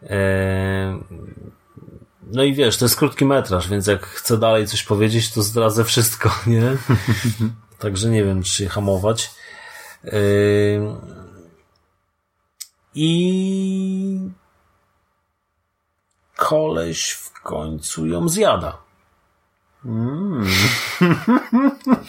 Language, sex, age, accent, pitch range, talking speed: Polish, male, 30-49, native, 95-125 Hz, 80 wpm